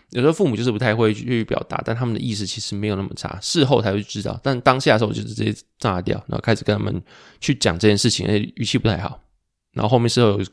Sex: male